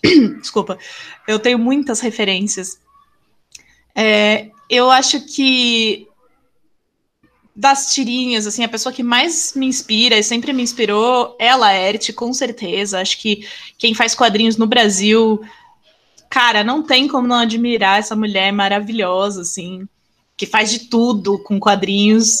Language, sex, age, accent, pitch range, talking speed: Portuguese, female, 20-39, Brazilian, 210-255 Hz, 130 wpm